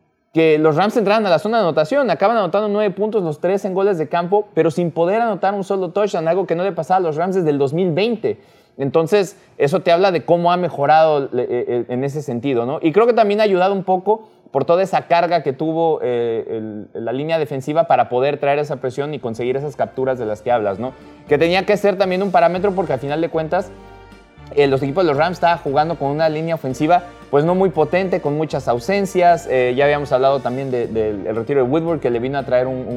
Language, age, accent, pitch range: Spanish, 30-49, Mexican, 130-180 Hz